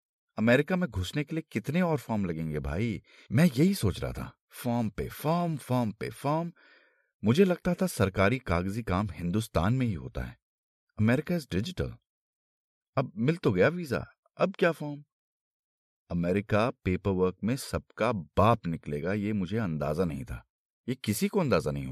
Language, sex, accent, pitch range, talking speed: Hindi, male, native, 100-160 Hz, 135 wpm